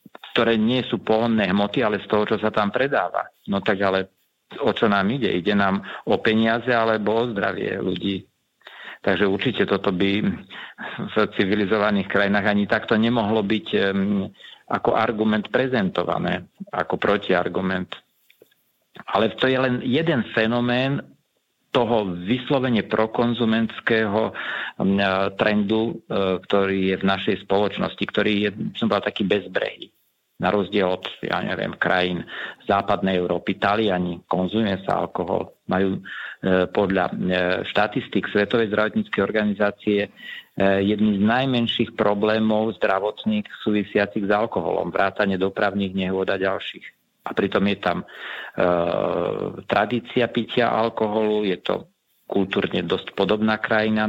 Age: 50-69